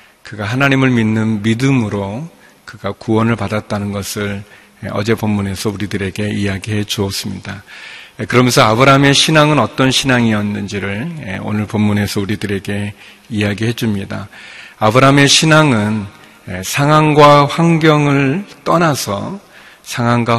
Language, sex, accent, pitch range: Korean, male, native, 105-130 Hz